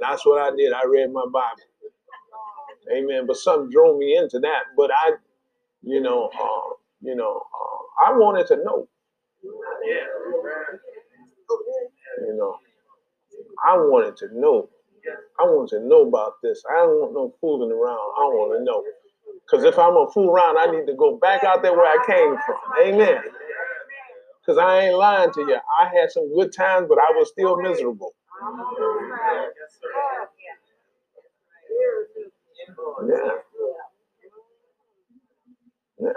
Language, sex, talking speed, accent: English, male, 150 wpm, American